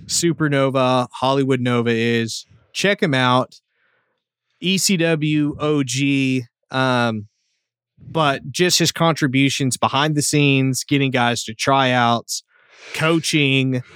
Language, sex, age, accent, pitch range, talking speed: English, male, 20-39, American, 125-150 Hz, 100 wpm